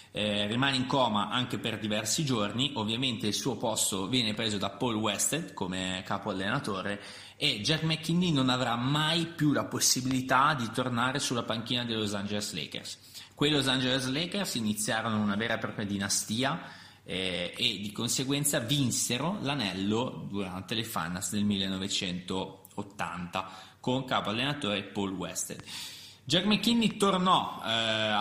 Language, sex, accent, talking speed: Italian, male, native, 145 wpm